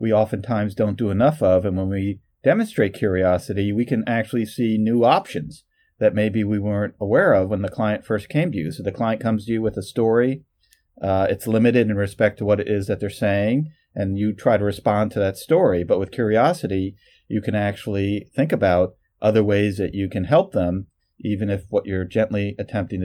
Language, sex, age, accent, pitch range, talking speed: English, male, 40-59, American, 95-110 Hz, 210 wpm